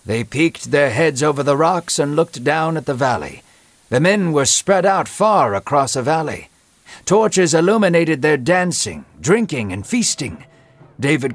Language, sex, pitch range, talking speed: English, male, 140-185 Hz, 160 wpm